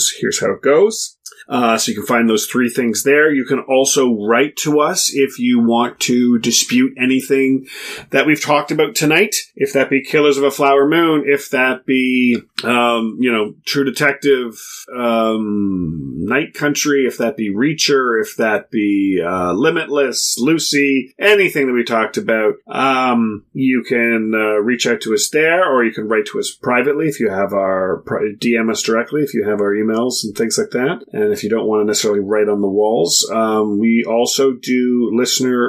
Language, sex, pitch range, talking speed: English, male, 110-140 Hz, 190 wpm